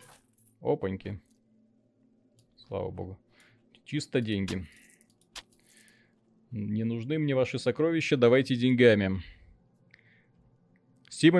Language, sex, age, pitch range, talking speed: Russian, male, 30-49, 120-150 Hz, 70 wpm